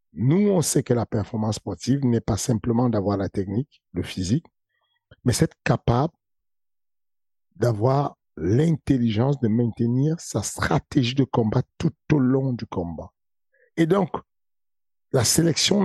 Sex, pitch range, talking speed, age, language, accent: male, 110-140 Hz, 135 wpm, 50-69, French, French